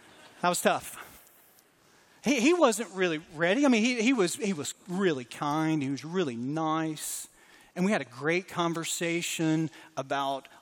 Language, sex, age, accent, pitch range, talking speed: English, male, 40-59, American, 160-215 Hz, 160 wpm